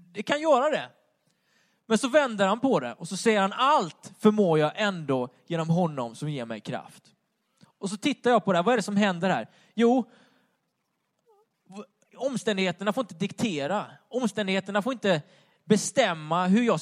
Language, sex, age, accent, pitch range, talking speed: Swedish, male, 20-39, native, 165-215 Hz, 170 wpm